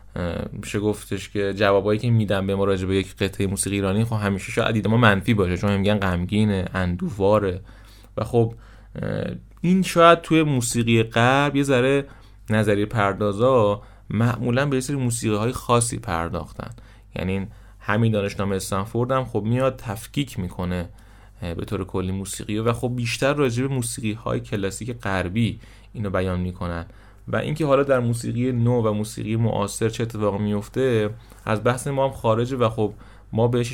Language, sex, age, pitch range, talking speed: Persian, male, 30-49, 100-120 Hz, 155 wpm